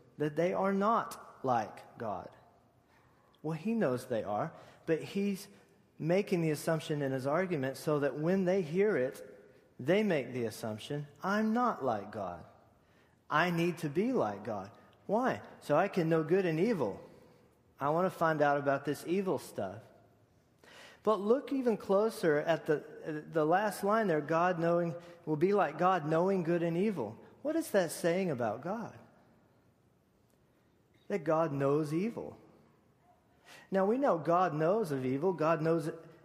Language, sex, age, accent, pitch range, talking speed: English, male, 40-59, American, 145-190 Hz, 155 wpm